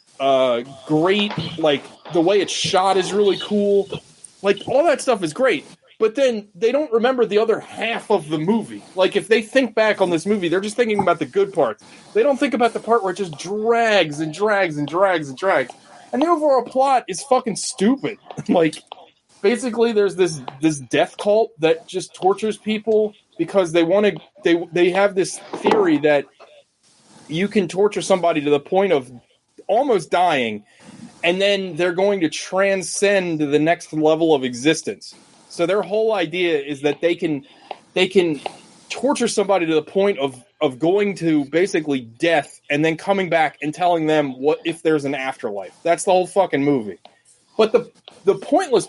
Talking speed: 185 wpm